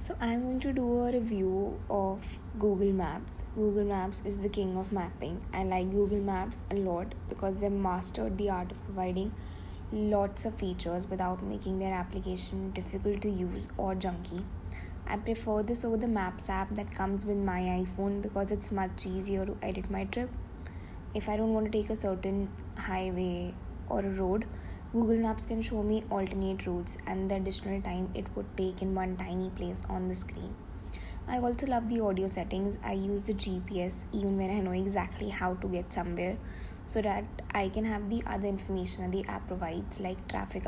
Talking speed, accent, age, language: 190 wpm, Indian, 20-39, English